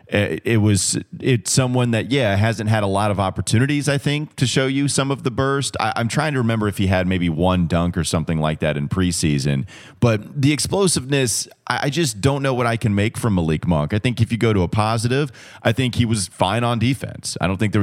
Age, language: 30-49, English